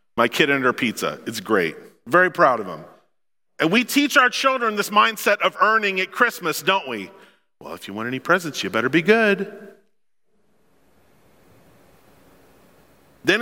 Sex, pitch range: male, 175-230 Hz